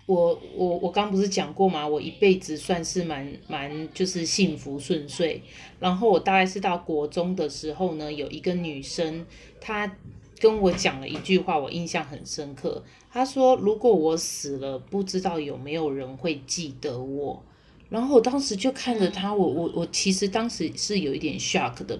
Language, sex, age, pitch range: Chinese, female, 20-39, 155-200 Hz